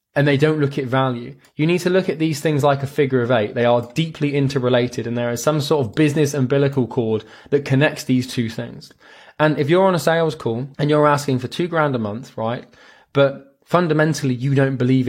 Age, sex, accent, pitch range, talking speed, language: 20-39, male, British, 120-150 Hz, 225 wpm, English